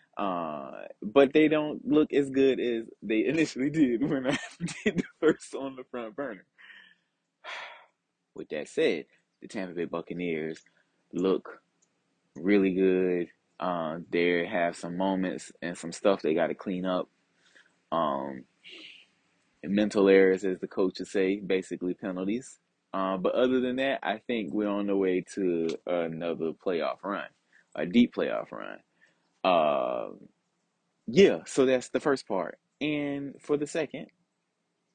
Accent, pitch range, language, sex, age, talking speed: American, 85-130 Hz, English, male, 20-39, 145 wpm